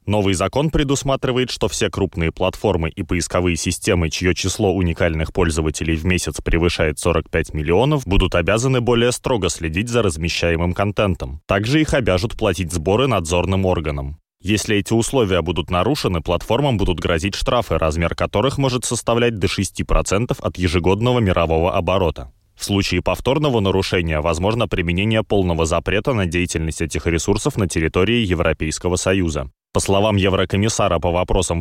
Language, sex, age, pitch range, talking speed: Russian, male, 20-39, 85-105 Hz, 140 wpm